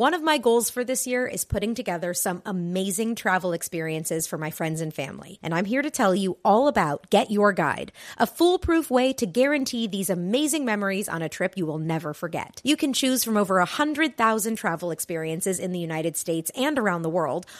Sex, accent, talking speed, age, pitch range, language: female, American, 210 wpm, 30-49, 175-250 Hz, English